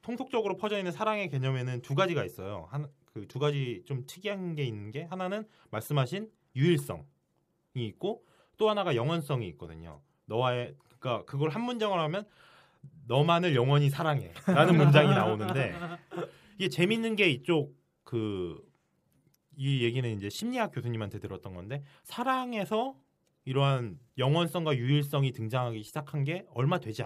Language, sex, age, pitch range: Korean, male, 20-39, 125-175 Hz